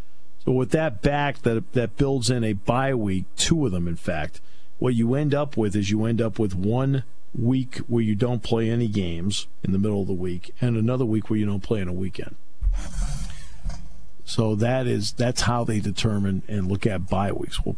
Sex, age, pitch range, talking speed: male, 50-69, 90-120 Hz, 215 wpm